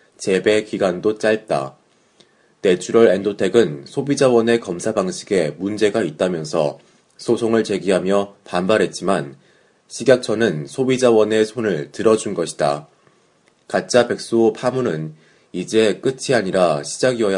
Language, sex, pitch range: Korean, male, 95-120 Hz